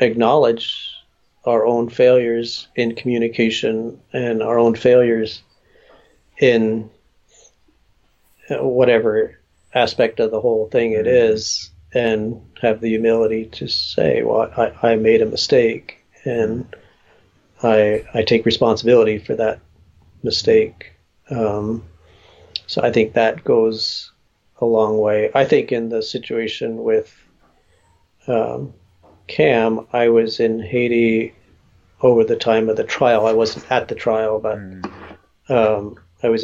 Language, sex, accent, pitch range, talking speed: English, male, American, 110-130 Hz, 125 wpm